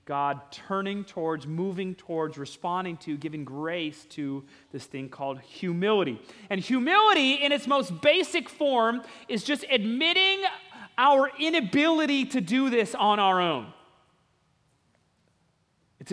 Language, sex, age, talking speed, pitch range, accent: English, male, 30-49, 125 wpm, 140-195 Hz, American